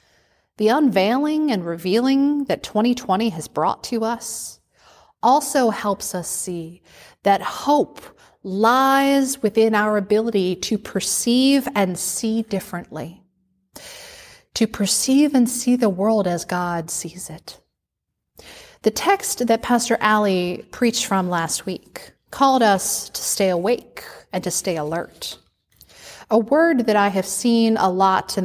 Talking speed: 130 wpm